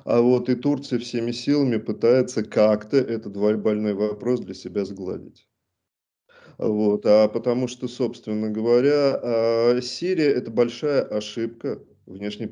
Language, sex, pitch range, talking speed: Russian, male, 105-120 Hz, 120 wpm